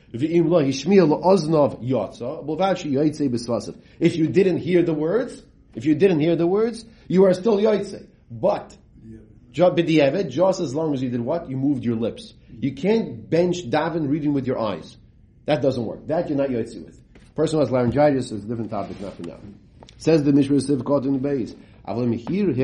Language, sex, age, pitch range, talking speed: English, male, 40-59, 120-160 Hz, 155 wpm